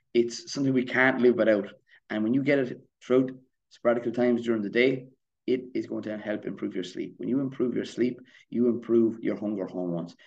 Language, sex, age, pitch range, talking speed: English, male, 30-49, 95-110 Hz, 205 wpm